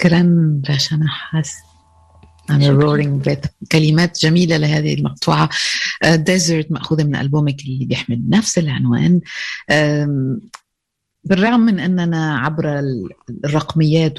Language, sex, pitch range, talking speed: Arabic, female, 135-175 Hz, 95 wpm